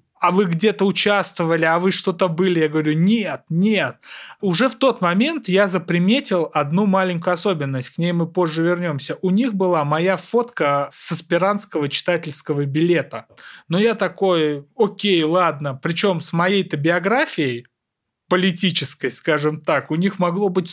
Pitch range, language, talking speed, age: 150-195 Hz, Russian, 150 wpm, 30-49